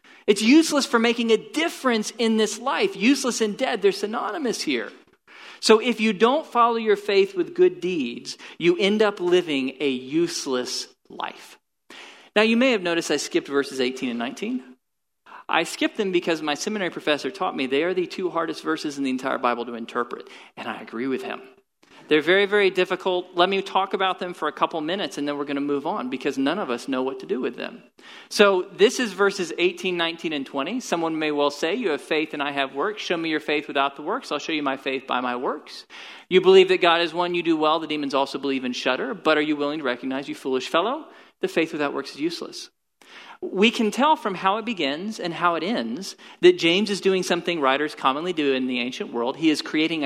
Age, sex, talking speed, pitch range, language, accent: 40-59, male, 225 wpm, 145-220 Hz, English, American